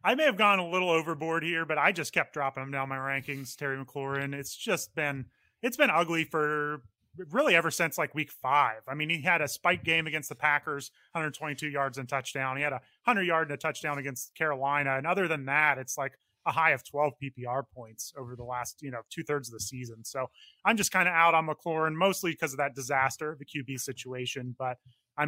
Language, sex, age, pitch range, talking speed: English, male, 30-49, 135-160 Hz, 225 wpm